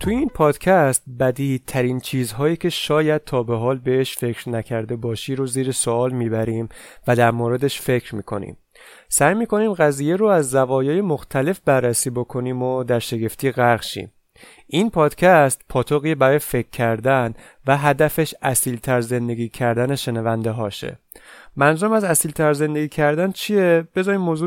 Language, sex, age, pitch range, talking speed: Persian, male, 30-49, 125-165 Hz, 140 wpm